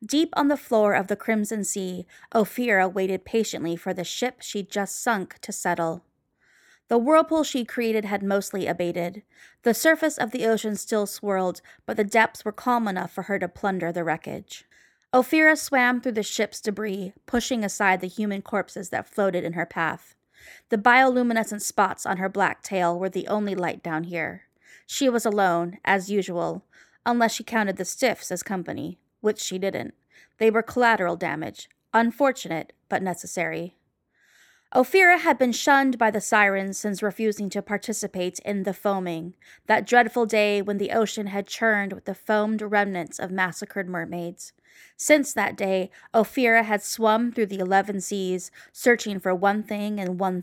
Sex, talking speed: female, 170 wpm